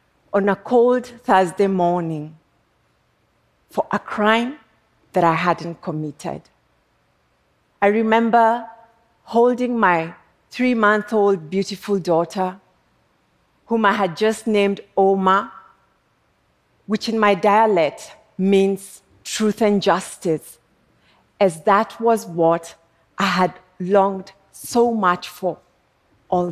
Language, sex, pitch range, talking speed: Arabic, female, 170-210 Hz, 100 wpm